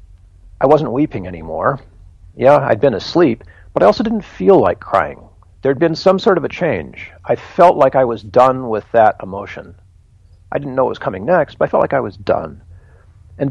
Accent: American